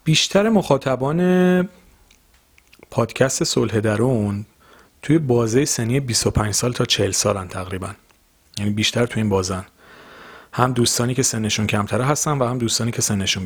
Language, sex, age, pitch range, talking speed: Persian, male, 40-59, 105-140 Hz, 125 wpm